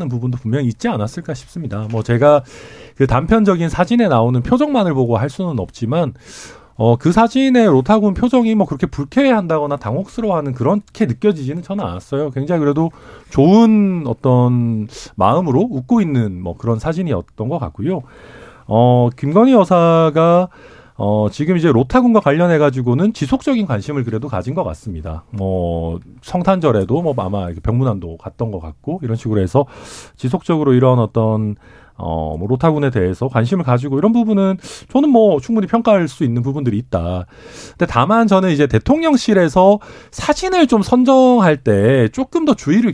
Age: 40-59